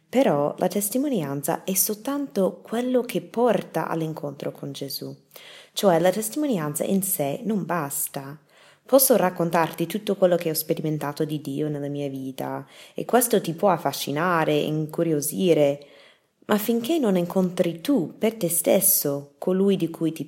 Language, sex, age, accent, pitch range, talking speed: Italian, female, 20-39, native, 155-210 Hz, 145 wpm